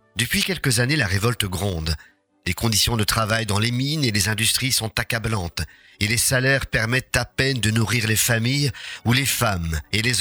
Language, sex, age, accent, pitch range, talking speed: French, male, 50-69, French, 100-125 Hz, 195 wpm